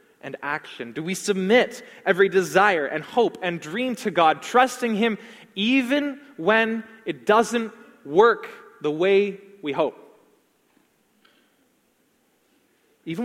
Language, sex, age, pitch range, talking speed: English, male, 20-39, 160-220 Hz, 115 wpm